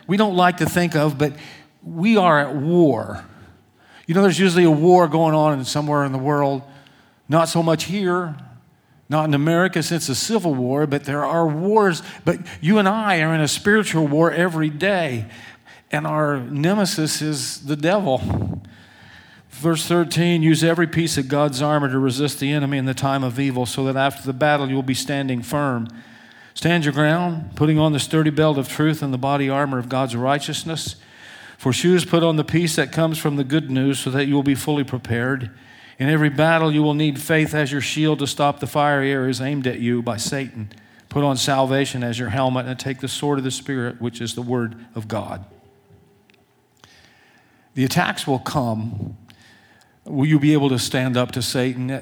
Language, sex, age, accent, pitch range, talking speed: English, male, 50-69, American, 130-160 Hz, 195 wpm